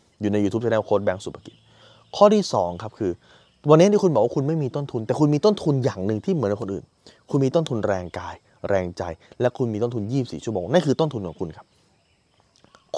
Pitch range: 120-160 Hz